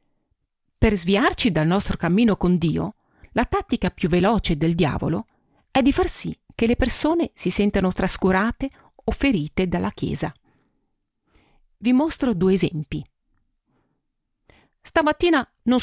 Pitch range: 175-250 Hz